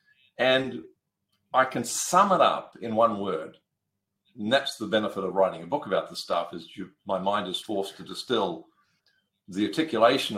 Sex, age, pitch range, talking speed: male, 50-69, 100-130 Hz, 170 wpm